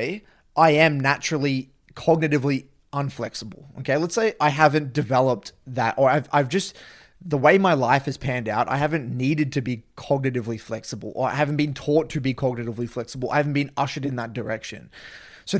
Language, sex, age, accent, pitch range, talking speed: English, male, 20-39, Australian, 125-155 Hz, 180 wpm